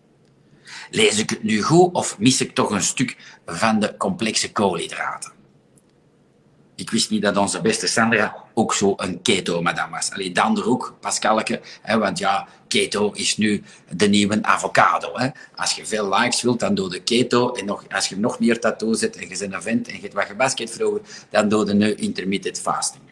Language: Dutch